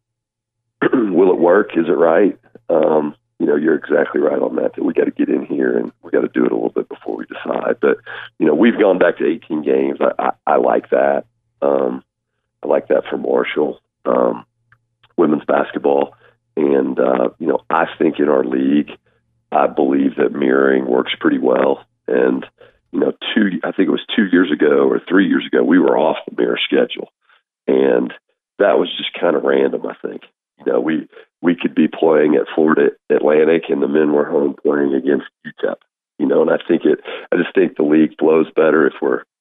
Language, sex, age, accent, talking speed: English, male, 40-59, American, 205 wpm